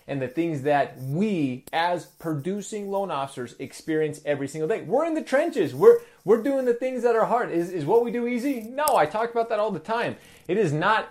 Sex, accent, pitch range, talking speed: male, American, 145-200 Hz, 220 wpm